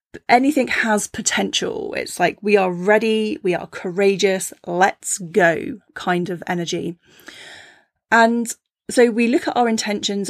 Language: English